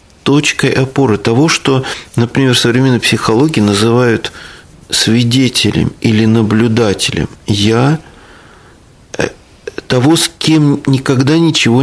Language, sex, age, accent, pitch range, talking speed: Russian, male, 40-59, native, 110-140 Hz, 90 wpm